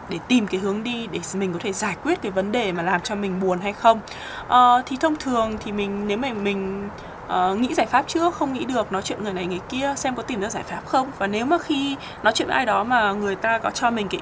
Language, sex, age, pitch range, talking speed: Vietnamese, female, 20-39, 200-270 Hz, 285 wpm